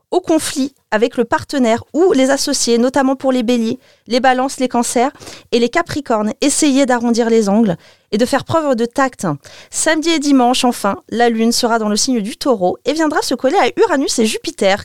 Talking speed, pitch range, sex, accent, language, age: 200 wpm, 215-275 Hz, female, French, French, 30-49